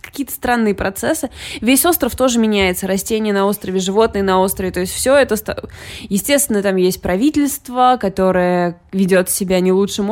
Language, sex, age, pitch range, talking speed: Russian, female, 20-39, 195-260 Hz, 160 wpm